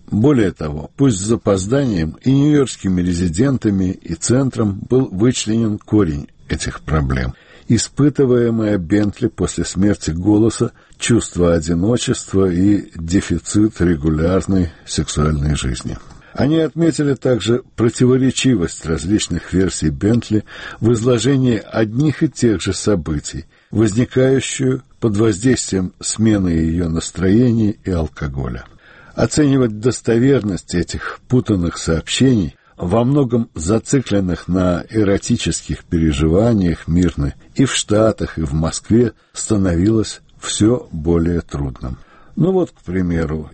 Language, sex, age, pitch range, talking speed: Russian, male, 60-79, 85-120 Hz, 105 wpm